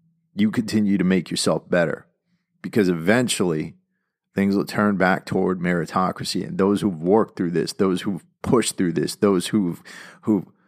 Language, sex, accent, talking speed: English, male, American, 155 wpm